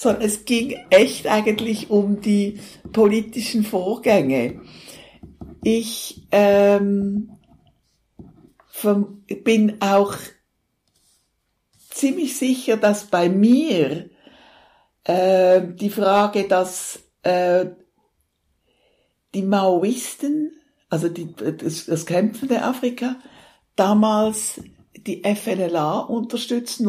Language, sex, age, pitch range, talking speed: English, female, 60-79, 190-245 Hz, 80 wpm